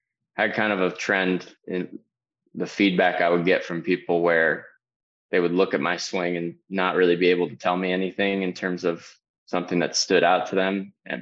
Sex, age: male, 20-39